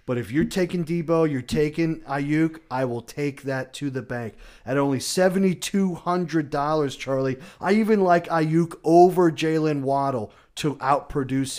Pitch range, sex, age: 120-160 Hz, male, 30-49